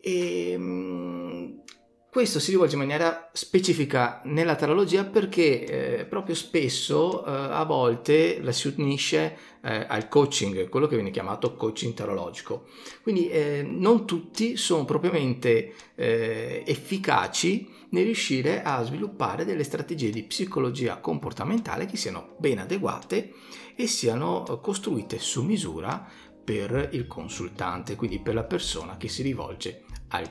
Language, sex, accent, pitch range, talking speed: Italian, male, native, 105-150 Hz, 125 wpm